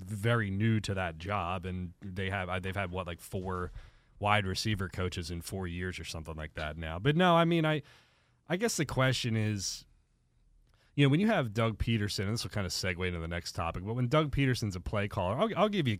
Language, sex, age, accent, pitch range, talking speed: English, male, 30-49, American, 90-125 Hz, 235 wpm